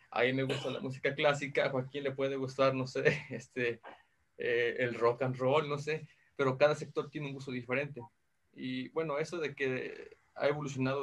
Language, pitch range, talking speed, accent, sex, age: Spanish, 125-145 Hz, 190 wpm, Mexican, male, 30-49